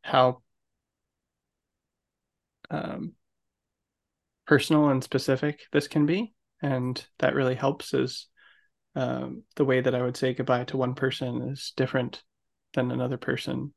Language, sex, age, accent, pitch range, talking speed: English, male, 20-39, American, 125-150 Hz, 125 wpm